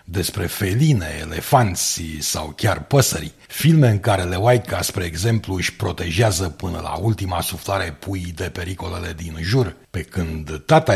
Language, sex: Romanian, male